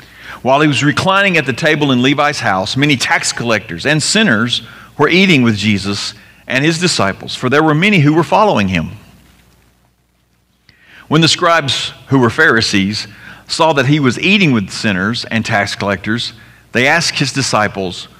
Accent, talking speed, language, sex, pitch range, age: American, 165 wpm, English, male, 105-155 Hz, 50-69